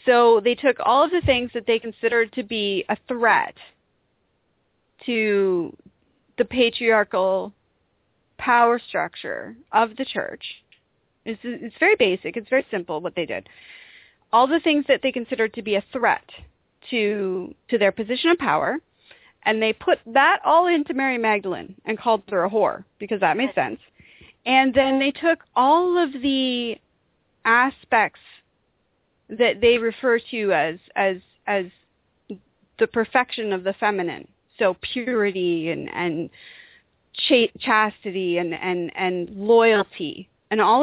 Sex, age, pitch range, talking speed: female, 30-49, 205-260 Hz, 140 wpm